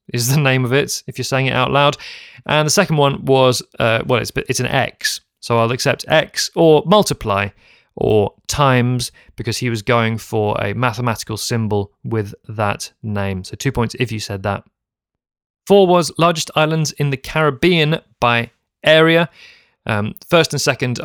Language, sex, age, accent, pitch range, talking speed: English, male, 30-49, British, 115-140 Hz, 175 wpm